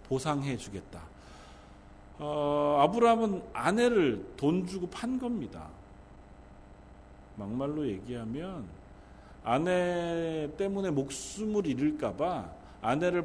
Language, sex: Korean, male